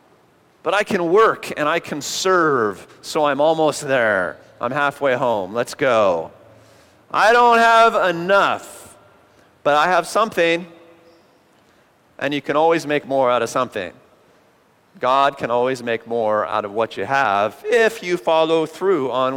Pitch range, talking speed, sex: 120-150 Hz, 150 wpm, male